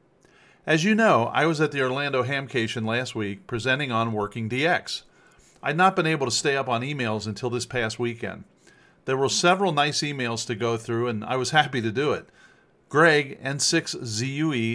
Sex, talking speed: male, 185 wpm